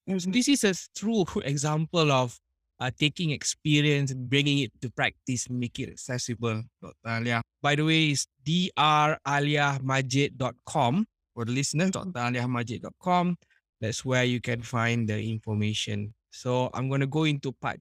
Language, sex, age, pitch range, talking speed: English, male, 20-39, 115-145 Hz, 140 wpm